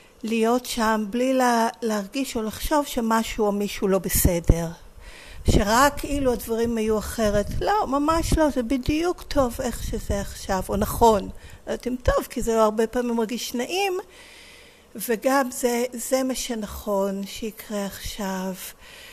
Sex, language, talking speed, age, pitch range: female, Hebrew, 125 wpm, 50-69, 195-255 Hz